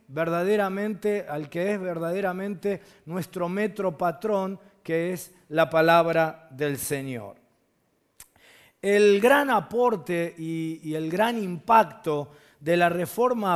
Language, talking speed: Spanish, 110 wpm